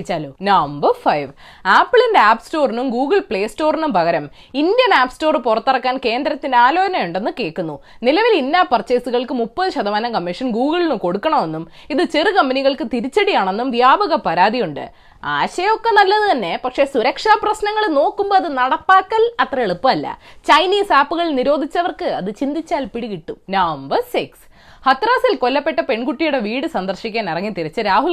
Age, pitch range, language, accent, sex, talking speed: 20-39, 220-345 Hz, Malayalam, native, female, 100 wpm